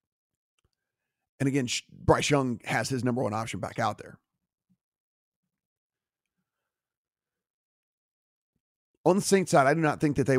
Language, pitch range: English, 115-140 Hz